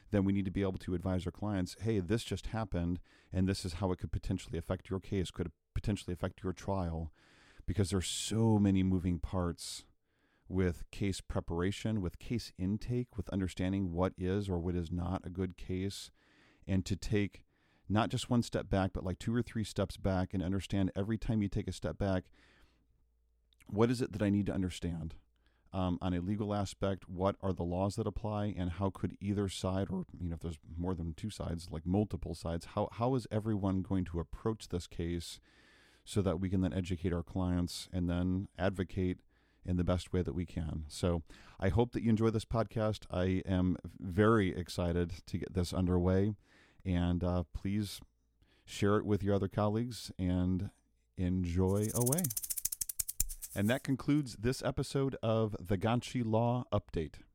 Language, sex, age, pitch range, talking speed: English, male, 40-59, 90-110 Hz, 185 wpm